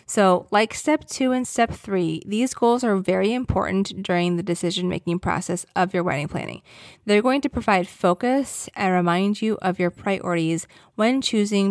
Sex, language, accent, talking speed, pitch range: female, English, American, 170 wpm, 180-230 Hz